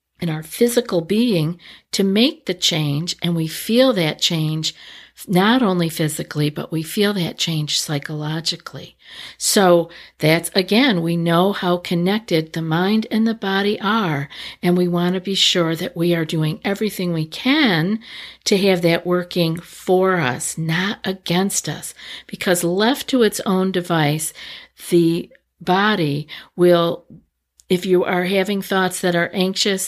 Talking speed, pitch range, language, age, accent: 150 wpm, 165-200 Hz, English, 50-69, American